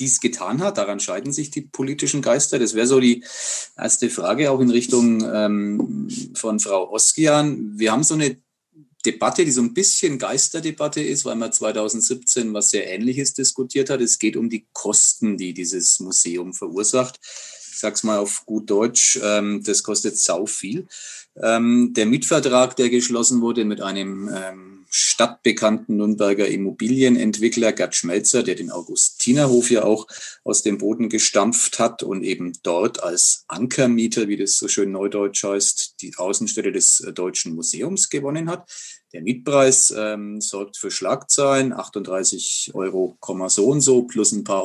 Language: German